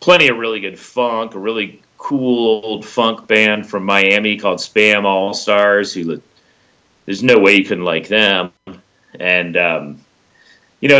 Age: 40-59